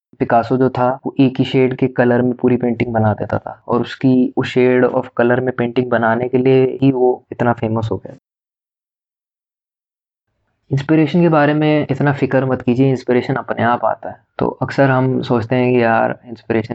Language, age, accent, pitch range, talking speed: Hindi, 20-39, native, 115-135 Hz, 190 wpm